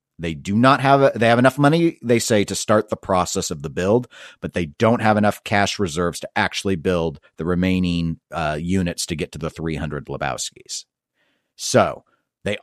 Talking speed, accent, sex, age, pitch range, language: 185 wpm, American, male, 40-59, 85-105 Hz, English